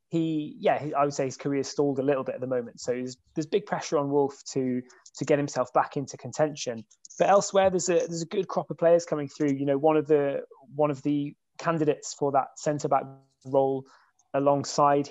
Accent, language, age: British, English, 20-39